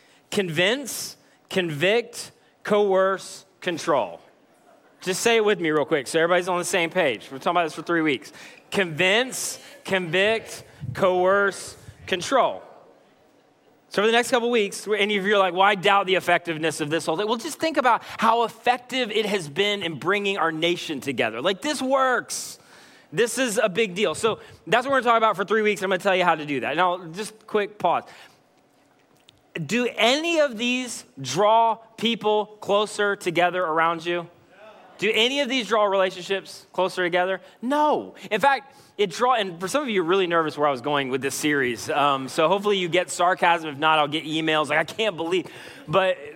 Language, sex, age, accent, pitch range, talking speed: English, male, 20-39, American, 180-230 Hz, 195 wpm